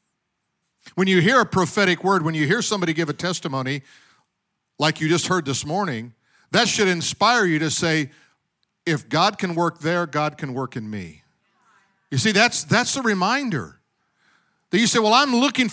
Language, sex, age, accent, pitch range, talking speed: English, male, 50-69, American, 160-225 Hz, 180 wpm